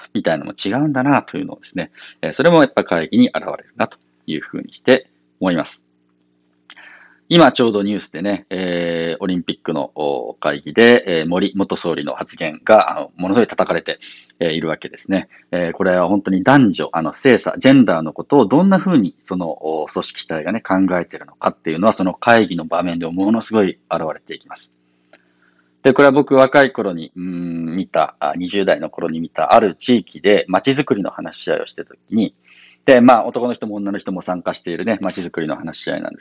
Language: Japanese